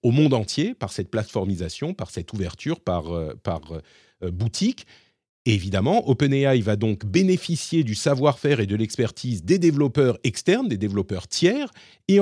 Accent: French